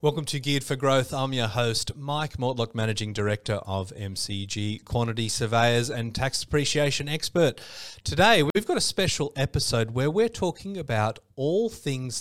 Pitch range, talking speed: 105-130 Hz, 155 wpm